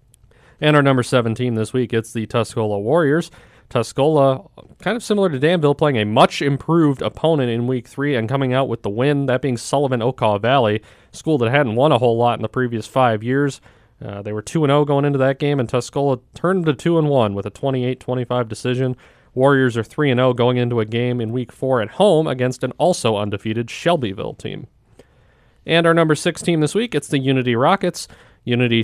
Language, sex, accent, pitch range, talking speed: English, male, American, 115-140 Hz, 195 wpm